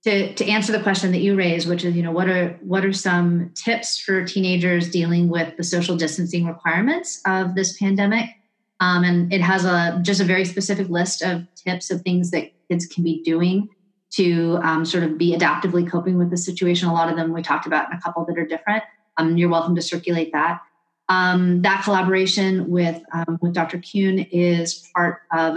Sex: female